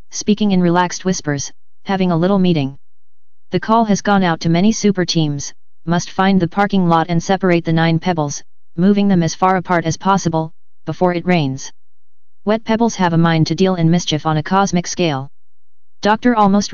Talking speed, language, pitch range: 185 wpm, English, 165-190 Hz